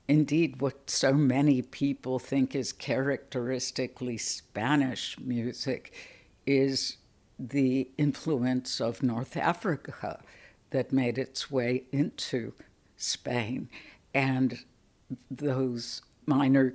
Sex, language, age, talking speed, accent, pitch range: female, English, 60-79, 90 wpm, American, 125-145 Hz